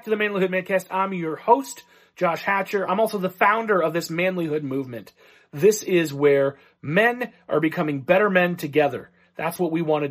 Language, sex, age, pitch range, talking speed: English, male, 30-49, 150-205 Hz, 185 wpm